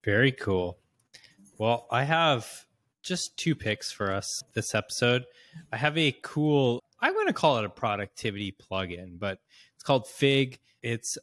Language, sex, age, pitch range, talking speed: English, male, 20-39, 105-135 Hz, 155 wpm